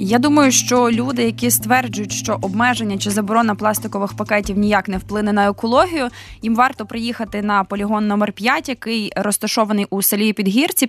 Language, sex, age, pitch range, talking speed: Ukrainian, female, 20-39, 200-235 Hz, 160 wpm